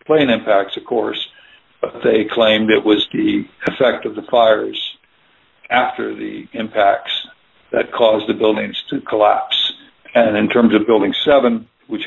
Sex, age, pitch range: male, 60-79, 110-130 Hz